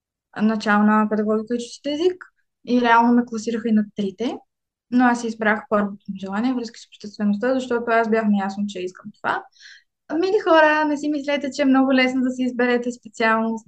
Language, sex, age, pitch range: Bulgarian, female, 20-39, 215-240 Hz